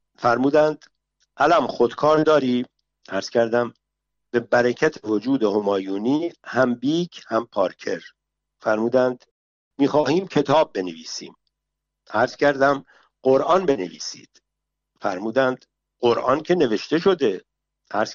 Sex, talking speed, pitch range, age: male, 95 wpm, 115-145 Hz, 50-69